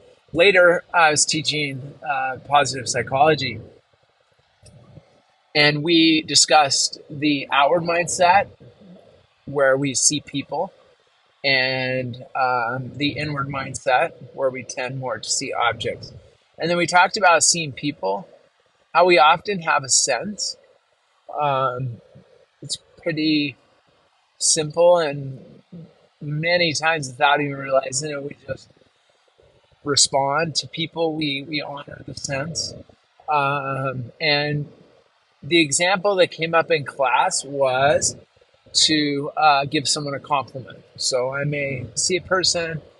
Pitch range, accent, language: 135-160 Hz, American, English